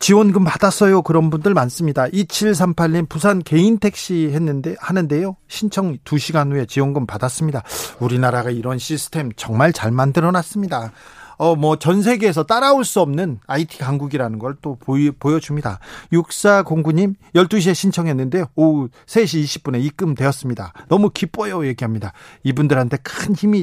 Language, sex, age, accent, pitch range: Korean, male, 40-59, native, 135-180 Hz